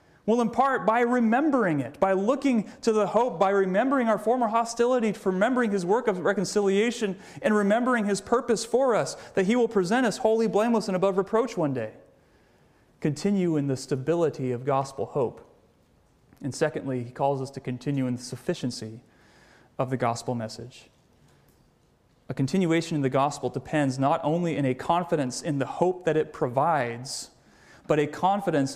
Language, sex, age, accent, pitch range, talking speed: English, male, 30-49, American, 150-210 Hz, 165 wpm